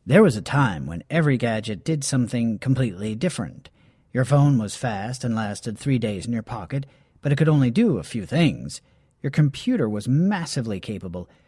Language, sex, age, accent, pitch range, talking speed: English, male, 40-59, American, 125-175 Hz, 185 wpm